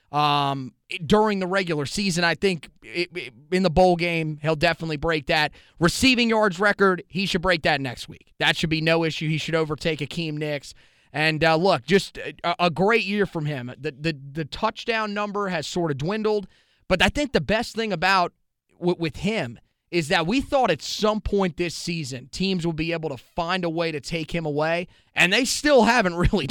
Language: English